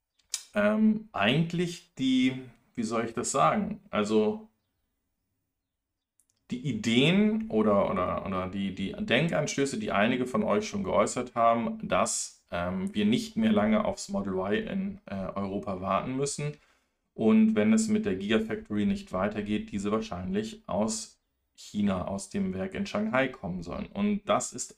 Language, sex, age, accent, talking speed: German, male, 40-59, German, 145 wpm